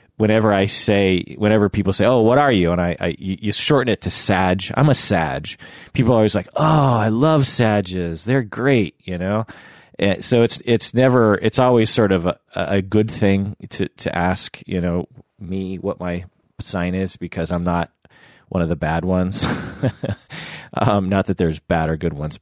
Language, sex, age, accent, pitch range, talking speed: English, male, 30-49, American, 90-115 Hz, 195 wpm